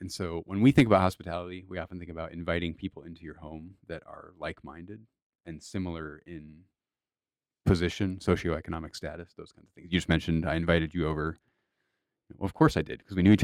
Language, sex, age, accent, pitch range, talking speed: English, male, 30-49, American, 80-95 Hz, 200 wpm